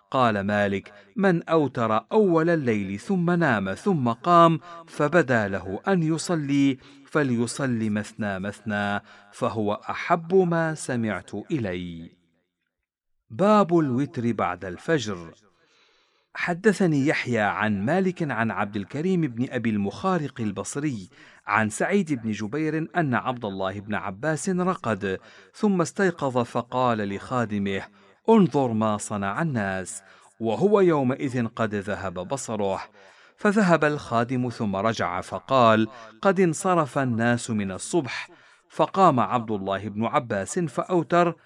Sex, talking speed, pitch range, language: male, 110 wpm, 105-165 Hz, Arabic